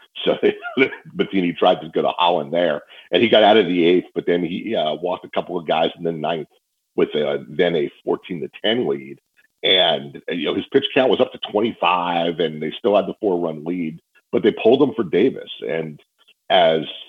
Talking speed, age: 215 wpm, 40-59